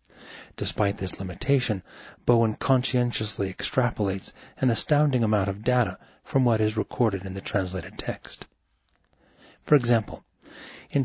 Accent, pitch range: American, 100-125 Hz